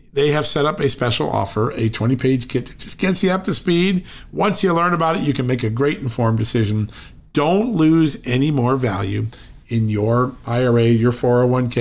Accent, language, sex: American, English, male